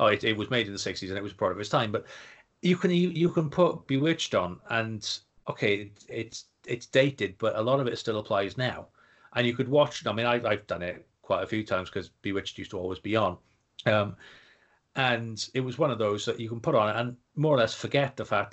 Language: English